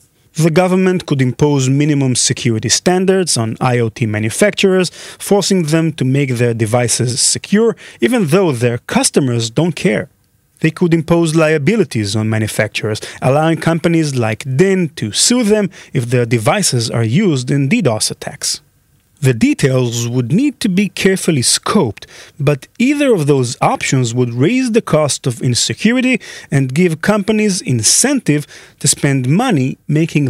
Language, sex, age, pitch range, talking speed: English, male, 30-49, 120-185 Hz, 140 wpm